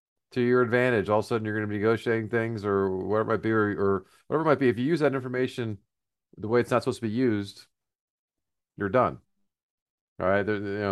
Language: English